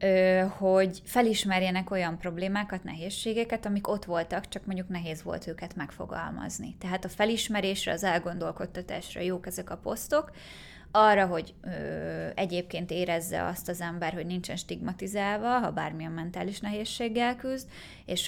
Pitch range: 170-195 Hz